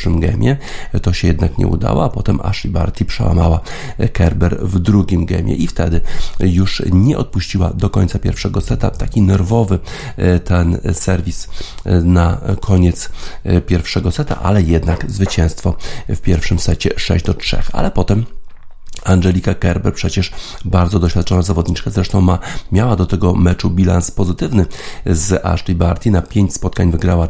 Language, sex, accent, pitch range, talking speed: Polish, male, native, 85-100 Hz, 140 wpm